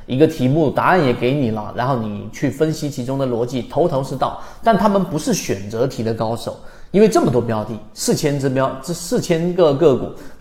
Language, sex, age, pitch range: Chinese, male, 30-49, 115-170 Hz